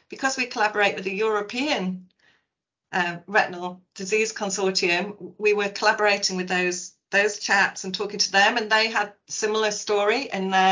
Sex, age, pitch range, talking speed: female, 40-59, 190-230 Hz, 160 wpm